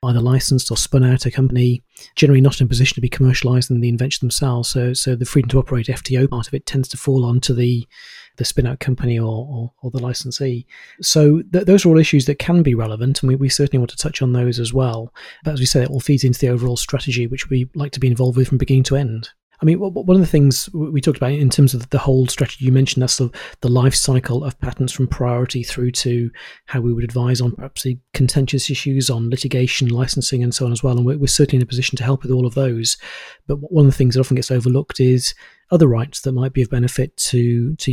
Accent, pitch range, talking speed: British, 125-140 Hz, 255 wpm